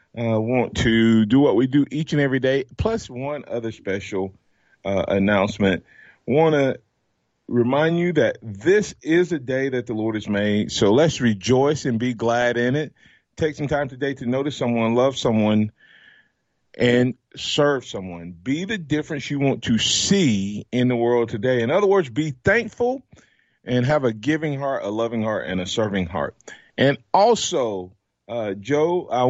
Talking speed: 175 wpm